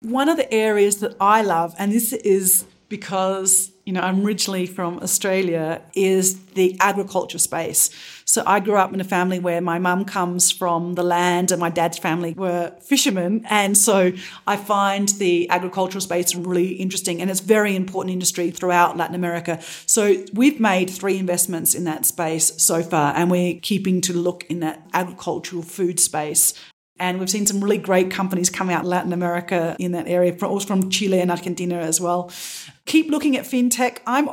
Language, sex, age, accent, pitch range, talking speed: English, female, 40-59, Australian, 180-205 Hz, 185 wpm